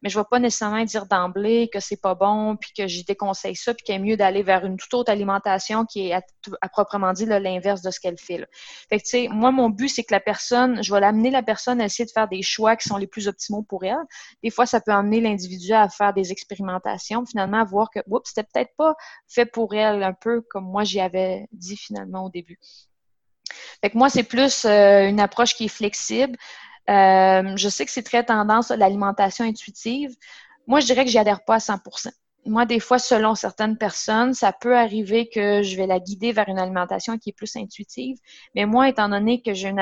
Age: 20-39